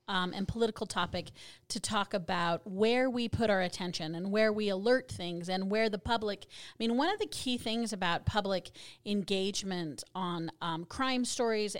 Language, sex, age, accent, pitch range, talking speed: English, female, 40-59, American, 180-220 Hz, 180 wpm